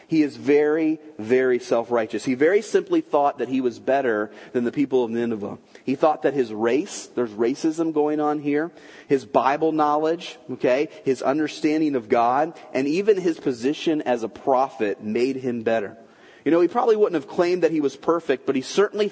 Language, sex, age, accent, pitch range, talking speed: English, male, 30-49, American, 135-185 Hz, 190 wpm